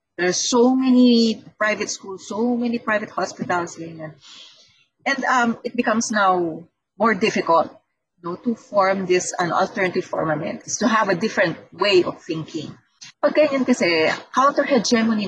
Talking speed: 155 wpm